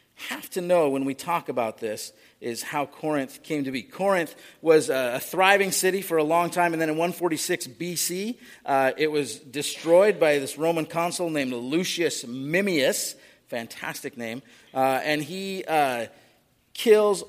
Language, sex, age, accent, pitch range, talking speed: English, male, 40-59, American, 140-175 Hz, 160 wpm